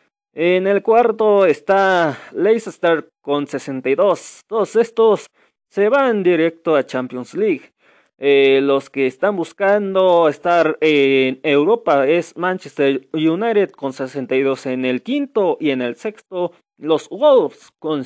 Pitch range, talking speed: 145-215 Hz, 135 wpm